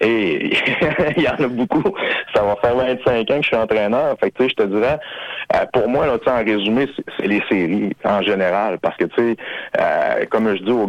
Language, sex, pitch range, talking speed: French, male, 100-110 Hz, 220 wpm